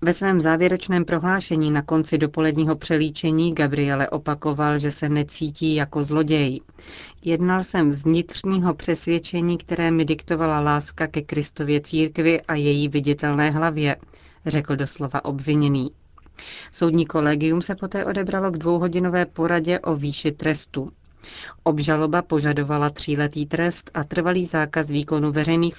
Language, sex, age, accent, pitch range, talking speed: Czech, female, 40-59, native, 145-170 Hz, 125 wpm